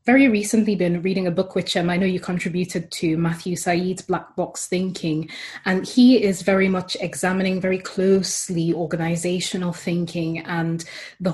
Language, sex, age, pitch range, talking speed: English, female, 20-39, 170-195 Hz, 160 wpm